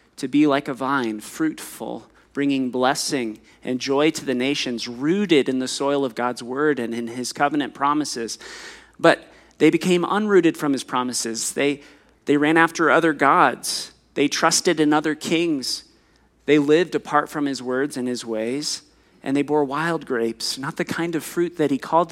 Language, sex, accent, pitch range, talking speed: English, male, American, 130-165 Hz, 175 wpm